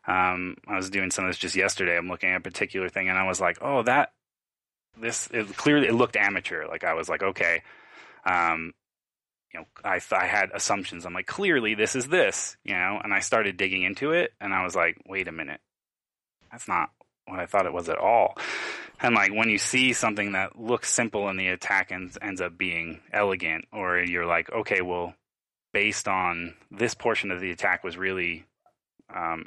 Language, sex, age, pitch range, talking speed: English, male, 20-39, 90-110 Hz, 205 wpm